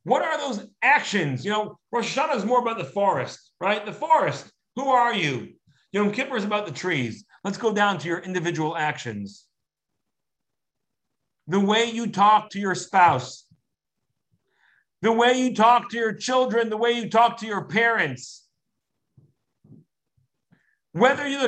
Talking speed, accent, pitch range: 155 wpm, American, 185-240 Hz